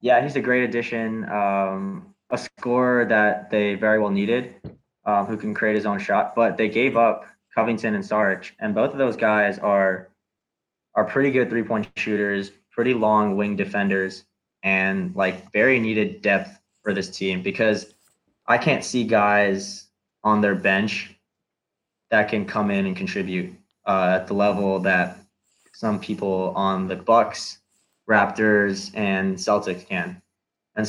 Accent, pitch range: American, 100-110 Hz